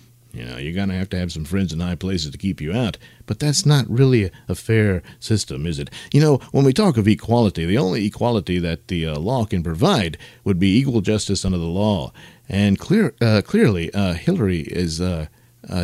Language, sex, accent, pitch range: English, male, American, 85-115 Hz